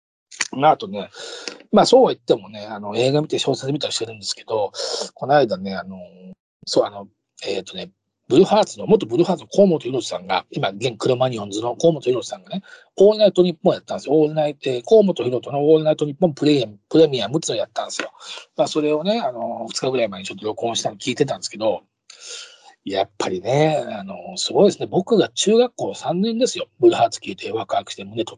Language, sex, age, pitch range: Japanese, male, 40-59, 135-215 Hz